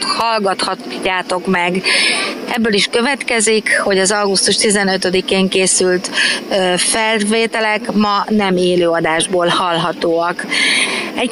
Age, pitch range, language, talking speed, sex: 30-49, 180-220 Hz, Hungarian, 90 wpm, female